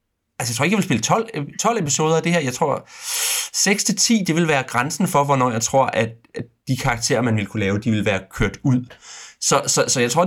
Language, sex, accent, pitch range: Danish, male, native, 115-160 Hz